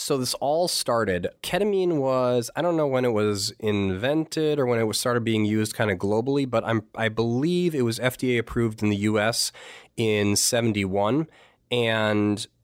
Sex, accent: male, American